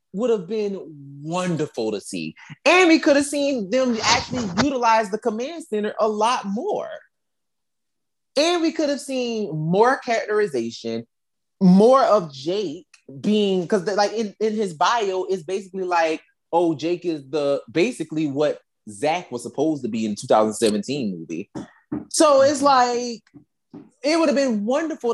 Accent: American